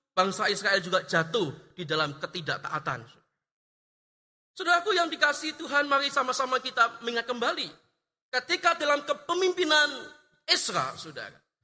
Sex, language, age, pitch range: male, Indonesian, 30-49, 190-305 Hz